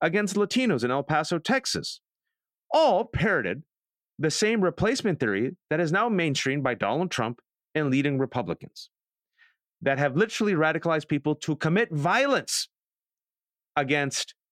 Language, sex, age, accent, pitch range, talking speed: English, male, 30-49, American, 120-175 Hz, 130 wpm